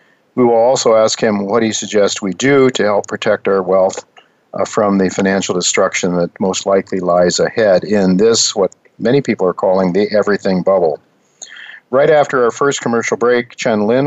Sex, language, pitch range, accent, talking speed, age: male, English, 95-120 Hz, American, 185 wpm, 50-69